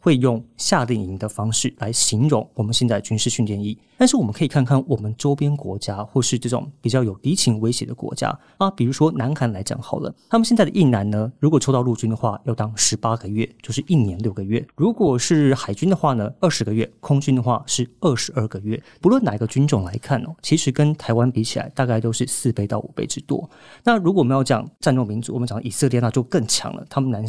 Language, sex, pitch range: Chinese, male, 115-145 Hz